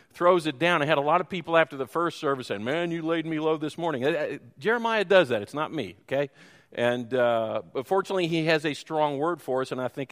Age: 50-69